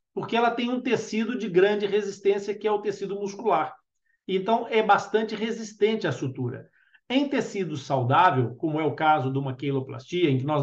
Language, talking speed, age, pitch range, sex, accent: Portuguese, 180 wpm, 50-69, 155-215 Hz, male, Brazilian